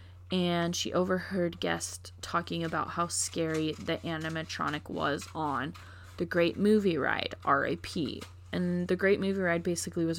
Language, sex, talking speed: English, female, 140 wpm